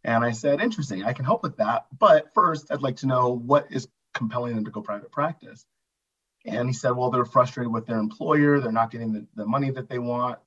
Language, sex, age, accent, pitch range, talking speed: English, male, 30-49, American, 115-145 Hz, 235 wpm